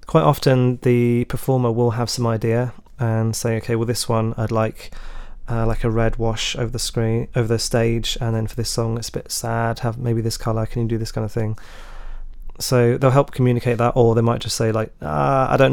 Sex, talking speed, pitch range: male, 235 wpm, 115-130 Hz